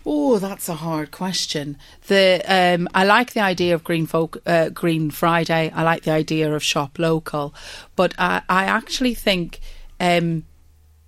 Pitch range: 160-195 Hz